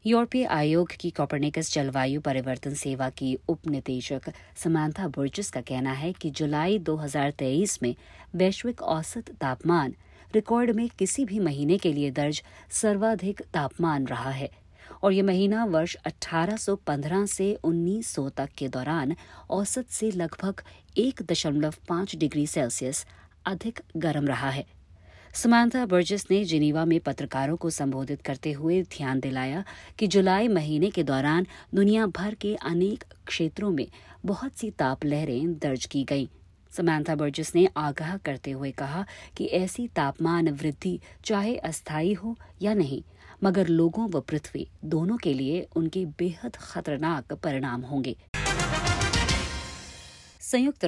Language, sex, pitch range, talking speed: Hindi, female, 140-190 Hz, 135 wpm